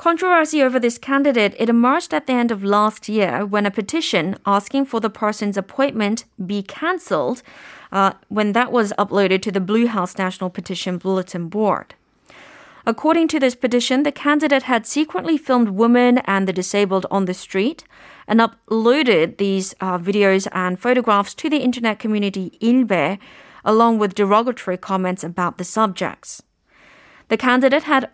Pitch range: 195-255 Hz